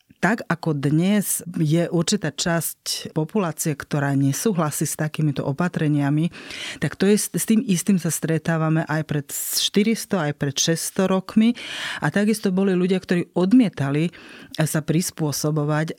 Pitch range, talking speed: 155-190 Hz, 125 wpm